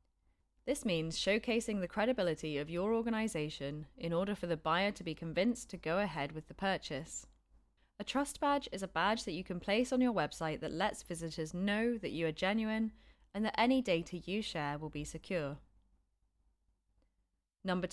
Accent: British